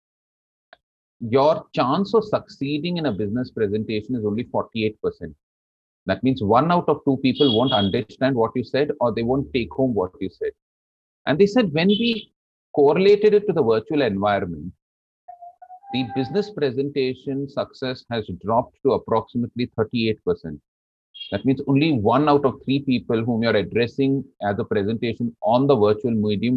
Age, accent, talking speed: 30-49, Indian, 160 wpm